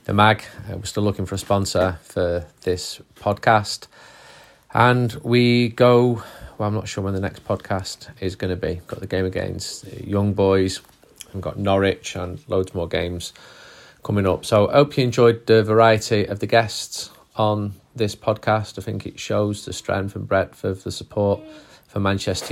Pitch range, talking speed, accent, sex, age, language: 95-115 Hz, 185 wpm, British, male, 30-49, English